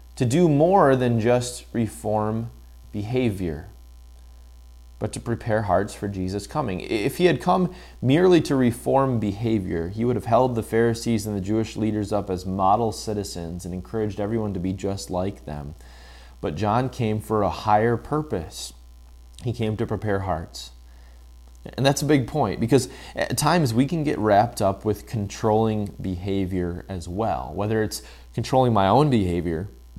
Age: 20-39